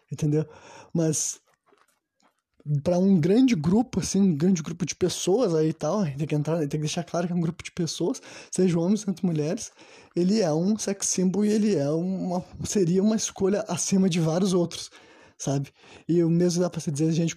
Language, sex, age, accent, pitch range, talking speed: Portuguese, male, 20-39, Brazilian, 155-185 Hz, 190 wpm